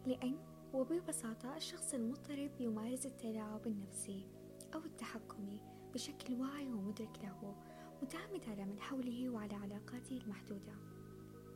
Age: 20-39